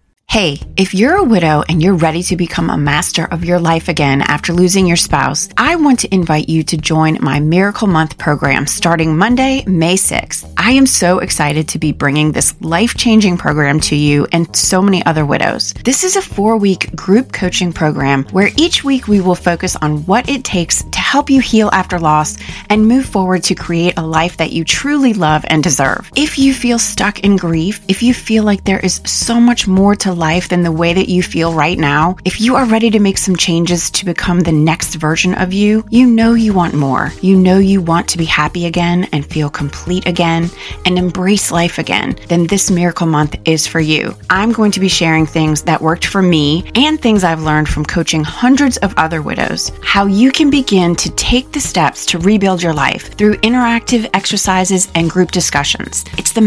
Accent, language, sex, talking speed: American, English, female, 210 wpm